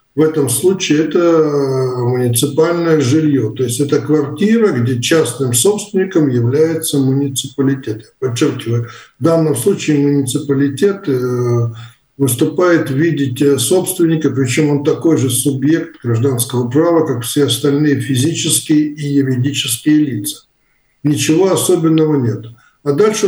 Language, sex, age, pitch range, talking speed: Russian, male, 50-69, 130-160 Hz, 110 wpm